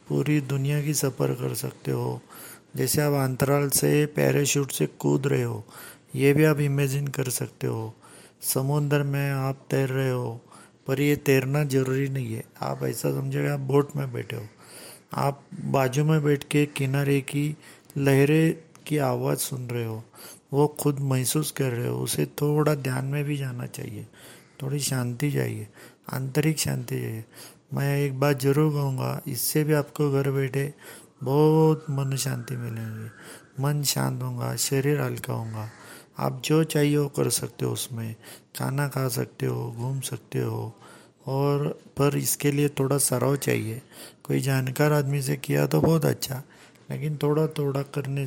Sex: male